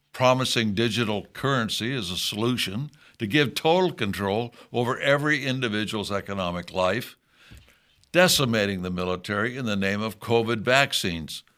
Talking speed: 125 wpm